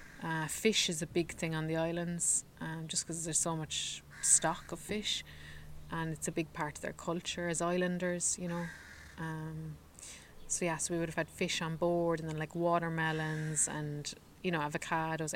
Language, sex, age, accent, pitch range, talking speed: English, female, 20-39, Irish, 160-180 Hz, 190 wpm